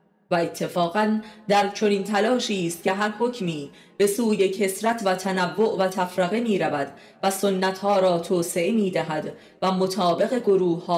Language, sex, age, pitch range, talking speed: Persian, female, 30-49, 175-215 Hz, 155 wpm